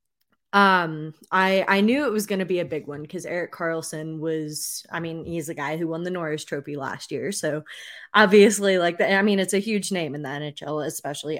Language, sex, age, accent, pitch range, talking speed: English, female, 20-39, American, 165-210 Hz, 220 wpm